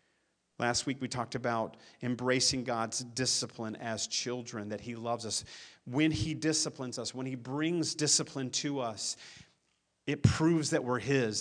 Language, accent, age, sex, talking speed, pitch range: English, American, 40-59, male, 155 wpm, 120-145 Hz